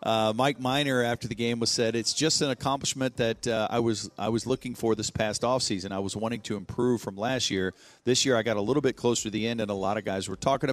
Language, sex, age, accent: English, male, 40-59, American